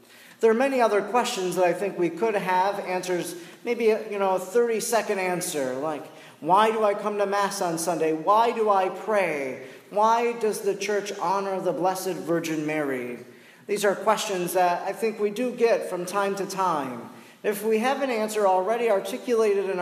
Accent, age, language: American, 40-59, English